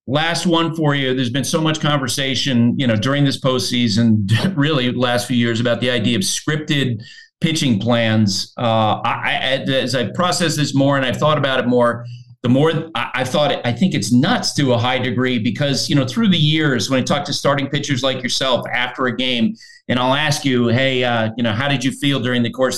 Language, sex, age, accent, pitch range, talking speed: English, male, 40-59, American, 125-155 Hz, 215 wpm